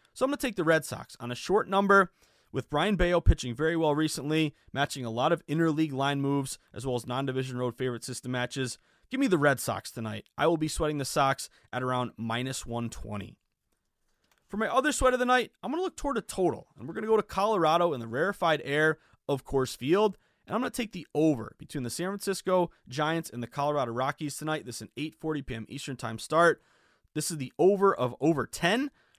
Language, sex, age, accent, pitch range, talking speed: English, male, 20-39, American, 130-170 Hz, 225 wpm